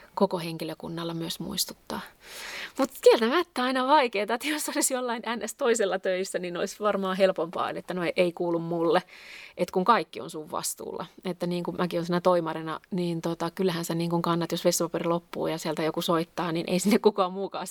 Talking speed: 185 wpm